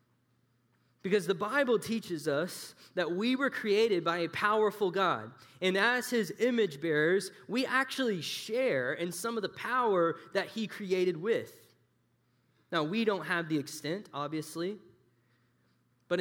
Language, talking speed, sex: English, 140 wpm, male